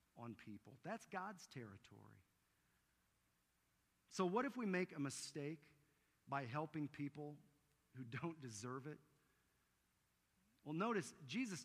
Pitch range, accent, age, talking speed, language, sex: 135-180 Hz, American, 50-69, 115 wpm, English, male